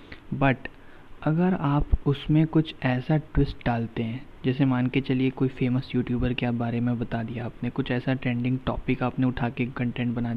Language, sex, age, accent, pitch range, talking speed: Hindi, male, 20-39, native, 120-135 Hz, 180 wpm